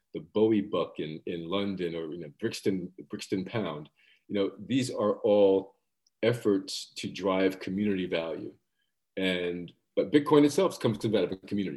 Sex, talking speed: male, 155 wpm